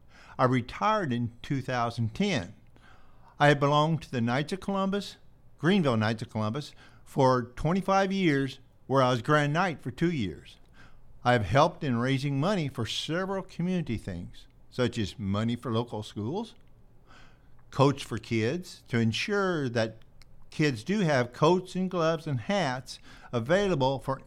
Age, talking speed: 50-69, 145 wpm